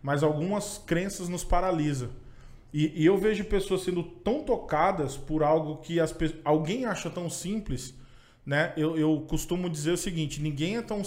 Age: 20-39